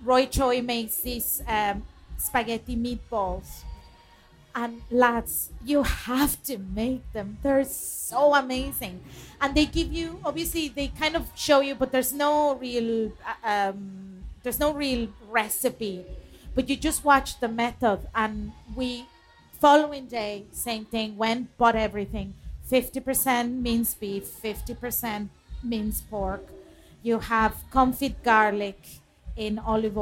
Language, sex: English, female